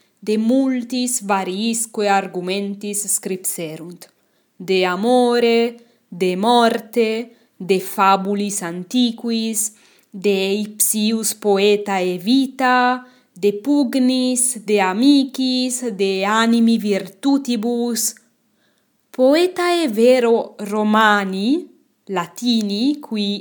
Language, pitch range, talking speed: English, 195-240 Hz, 70 wpm